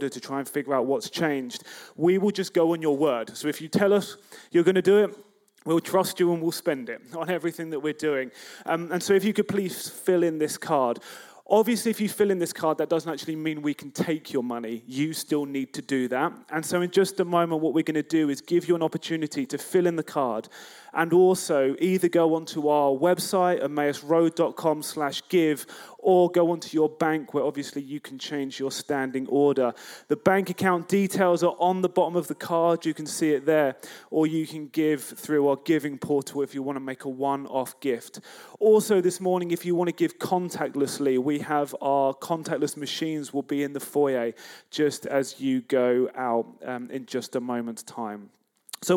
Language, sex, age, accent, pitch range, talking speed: English, male, 30-49, British, 145-180 Hz, 215 wpm